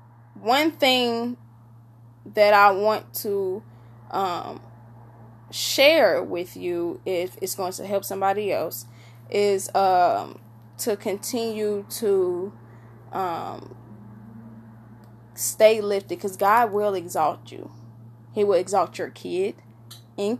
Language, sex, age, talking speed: English, female, 10-29, 105 wpm